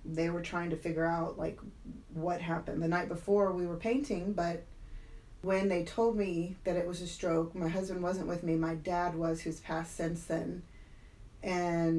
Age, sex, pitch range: 30-49, female, 160-190 Hz